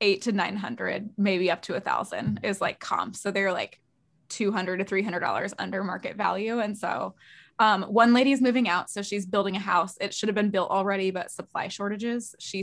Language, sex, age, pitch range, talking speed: English, female, 20-39, 185-210 Hz, 200 wpm